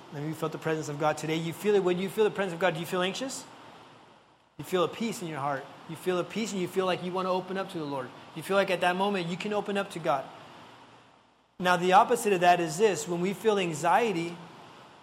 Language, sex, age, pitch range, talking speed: Spanish, male, 30-49, 170-200 Hz, 270 wpm